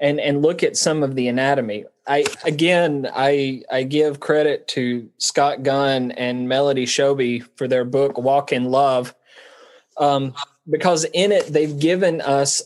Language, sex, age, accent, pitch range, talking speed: English, male, 20-39, American, 130-160 Hz, 155 wpm